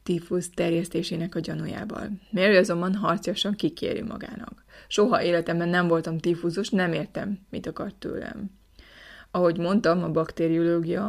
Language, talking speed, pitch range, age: Hungarian, 130 wpm, 170-200 Hz, 20-39